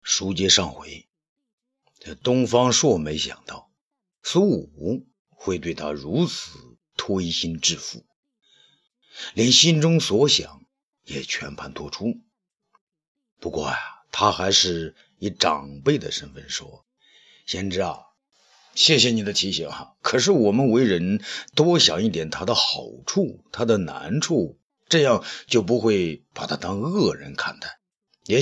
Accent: native